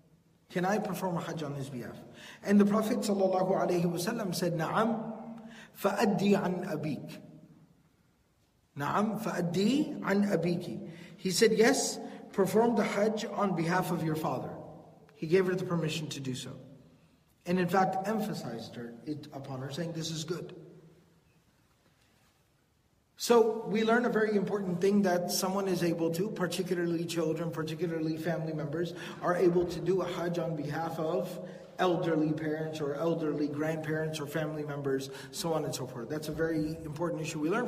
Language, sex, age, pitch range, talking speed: English, male, 40-59, 155-185 Hz, 155 wpm